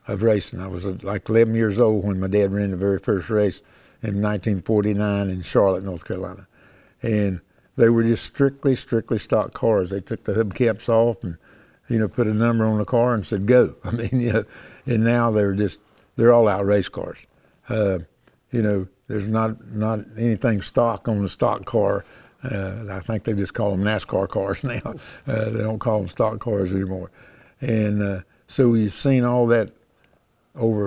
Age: 60-79